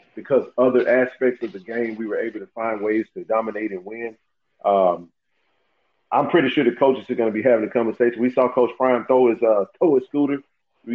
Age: 40-59